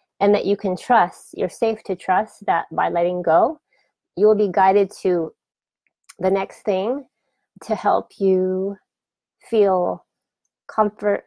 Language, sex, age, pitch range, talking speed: English, female, 20-39, 175-215 Hz, 140 wpm